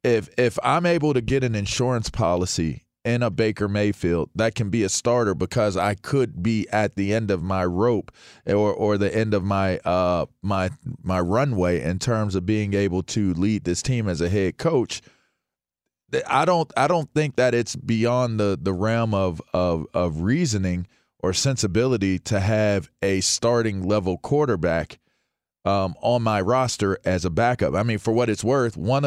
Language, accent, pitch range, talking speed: English, American, 95-120 Hz, 180 wpm